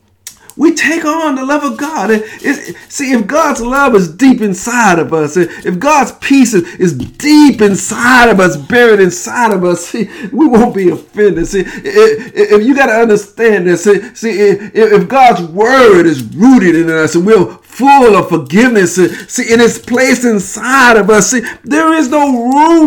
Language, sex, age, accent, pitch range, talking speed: English, male, 50-69, American, 205-280 Hz, 180 wpm